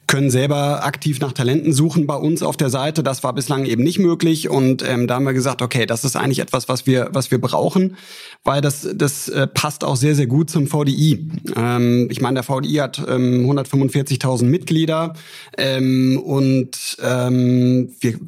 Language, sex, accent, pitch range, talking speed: German, male, German, 120-145 Hz, 185 wpm